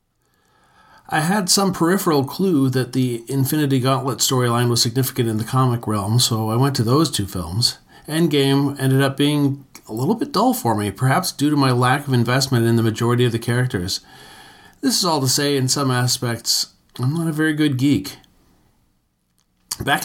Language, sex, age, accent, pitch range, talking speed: English, male, 40-59, American, 115-145 Hz, 185 wpm